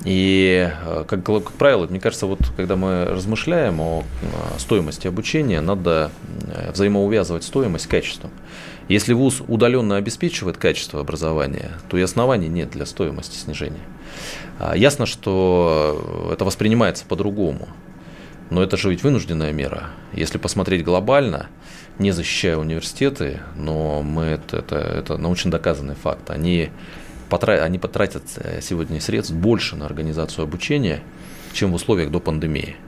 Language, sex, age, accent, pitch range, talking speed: Russian, male, 20-39, native, 80-100 Hz, 130 wpm